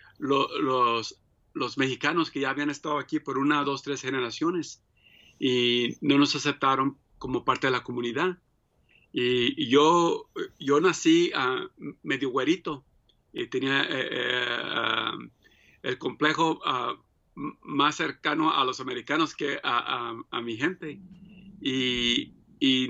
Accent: Mexican